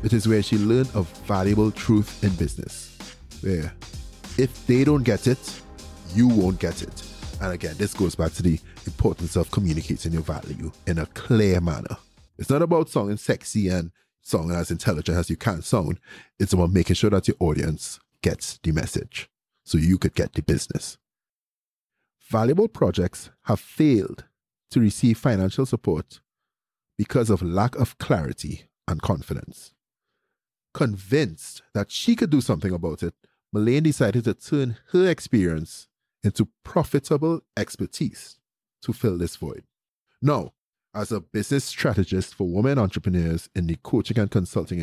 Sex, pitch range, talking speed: male, 85-125 Hz, 155 wpm